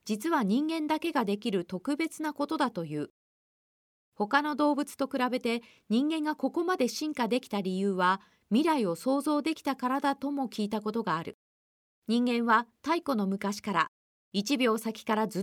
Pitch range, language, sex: 200-285 Hz, Japanese, female